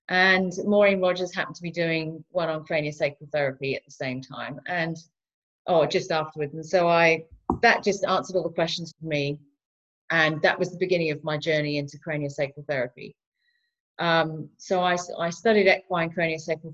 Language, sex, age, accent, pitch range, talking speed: English, female, 30-49, British, 160-195 Hz, 170 wpm